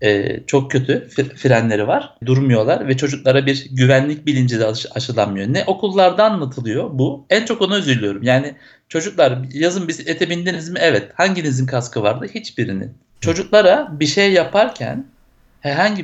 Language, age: Turkish, 60-79